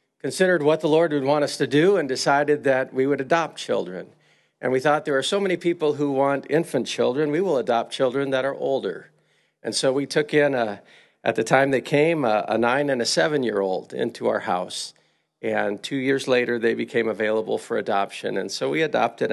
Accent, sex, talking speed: American, male, 210 wpm